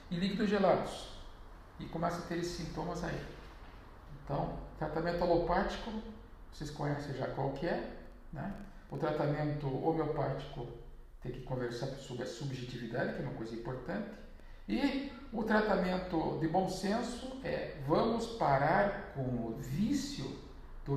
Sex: male